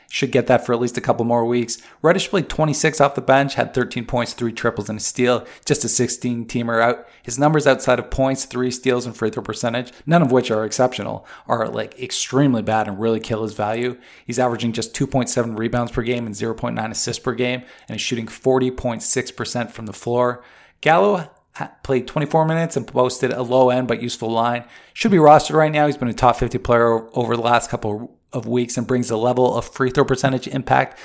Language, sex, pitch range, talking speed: English, male, 120-135 Hz, 215 wpm